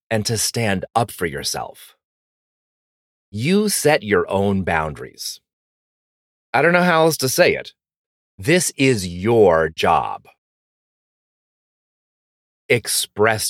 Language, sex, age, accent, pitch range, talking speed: English, male, 30-49, American, 105-165 Hz, 105 wpm